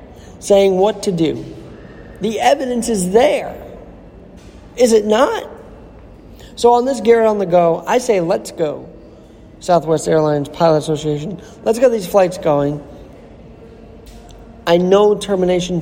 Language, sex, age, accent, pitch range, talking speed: English, male, 40-59, American, 145-195 Hz, 130 wpm